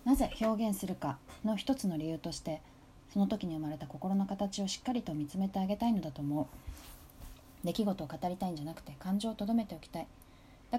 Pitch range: 155-210 Hz